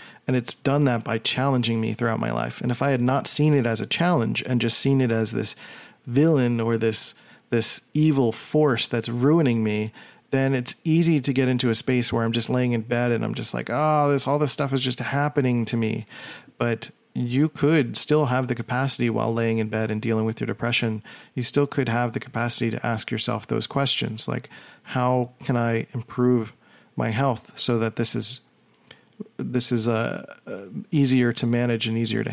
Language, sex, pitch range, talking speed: English, male, 115-140 Hz, 205 wpm